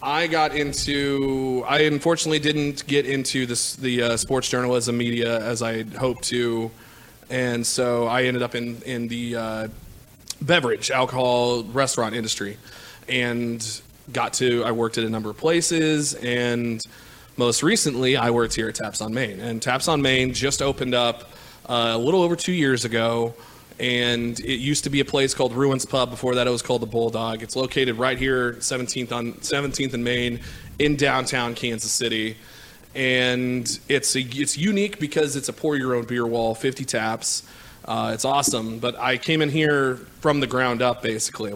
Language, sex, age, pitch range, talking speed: English, male, 20-39, 115-135 Hz, 180 wpm